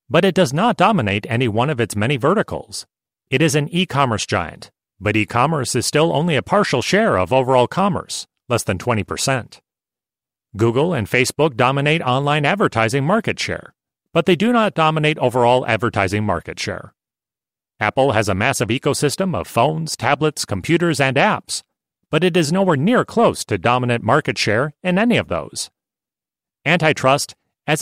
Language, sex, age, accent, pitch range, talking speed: English, male, 40-59, American, 115-165 Hz, 160 wpm